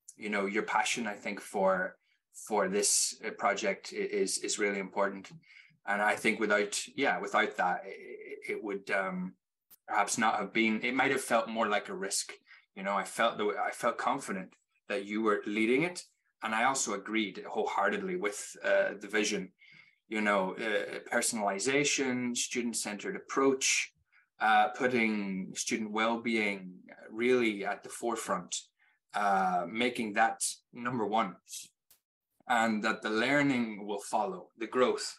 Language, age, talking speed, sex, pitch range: English, 20-39, 150 wpm, male, 100-135 Hz